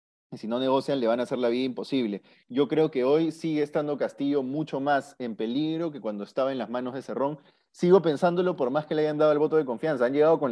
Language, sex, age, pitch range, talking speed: Spanish, male, 30-49, 135-170 Hz, 255 wpm